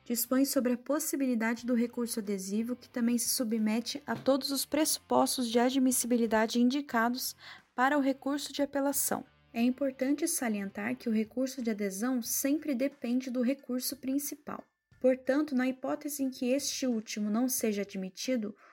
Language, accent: Portuguese, Brazilian